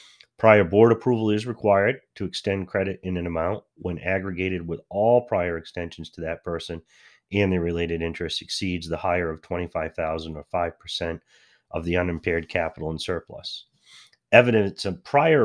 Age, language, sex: 30-49, English, male